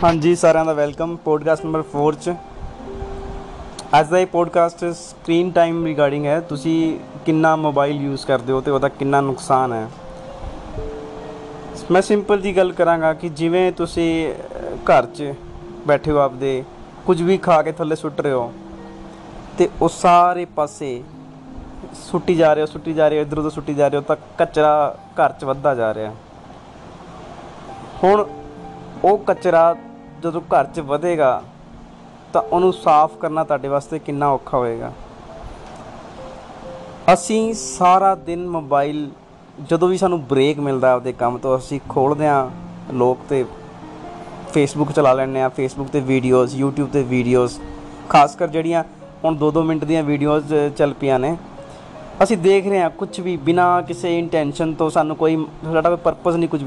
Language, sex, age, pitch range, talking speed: Punjabi, male, 20-39, 140-170 Hz, 130 wpm